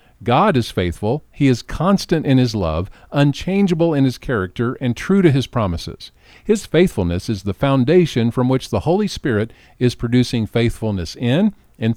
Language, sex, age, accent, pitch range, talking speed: English, male, 50-69, American, 100-150 Hz, 165 wpm